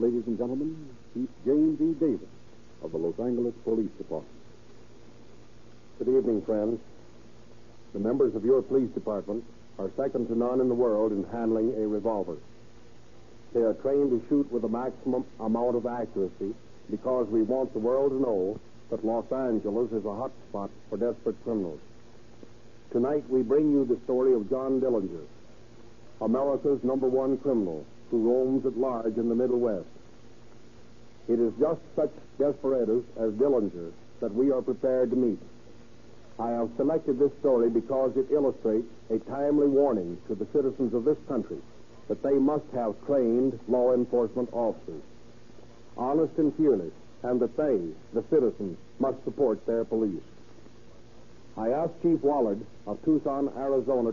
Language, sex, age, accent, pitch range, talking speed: English, male, 60-79, American, 115-135 Hz, 155 wpm